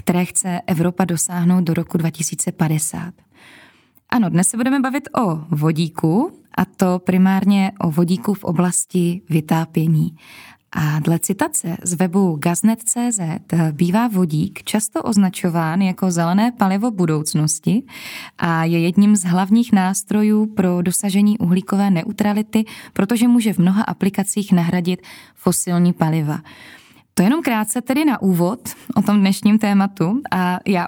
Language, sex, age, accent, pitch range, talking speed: Czech, female, 20-39, native, 175-210 Hz, 130 wpm